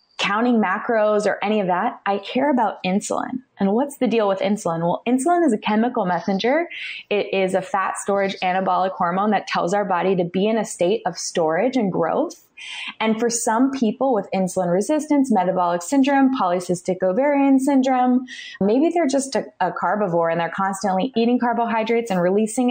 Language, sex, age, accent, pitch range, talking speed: English, female, 20-39, American, 185-250 Hz, 175 wpm